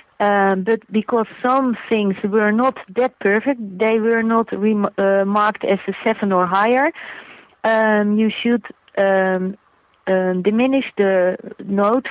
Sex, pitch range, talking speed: female, 190-220 Hz, 135 wpm